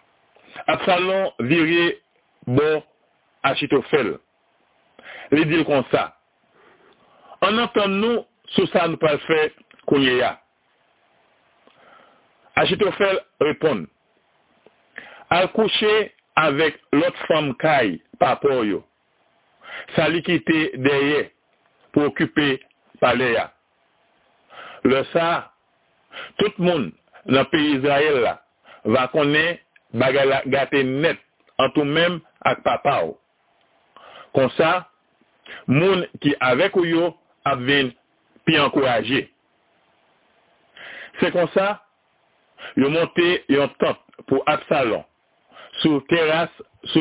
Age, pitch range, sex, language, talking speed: 60-79, 140-175 Hz, male, French, 90 wpm